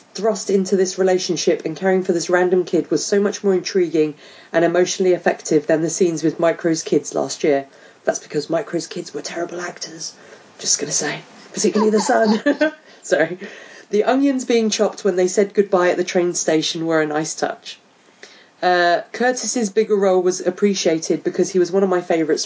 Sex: female